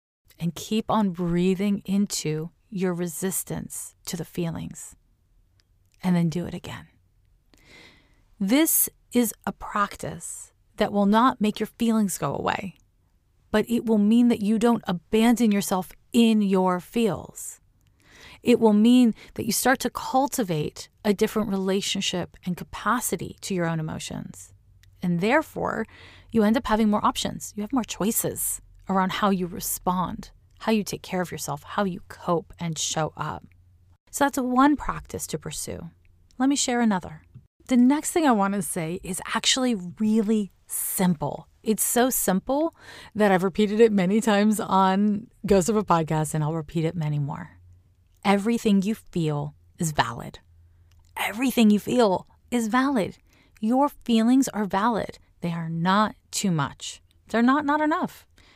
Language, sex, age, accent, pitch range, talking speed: English, female, 30-49, American, 155-220 Hz, 150 wpm